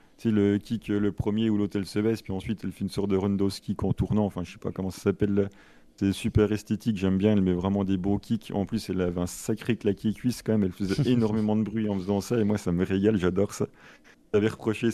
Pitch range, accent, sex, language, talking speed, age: 95-110 Hz, French, male, French, 260 wpm, 30-49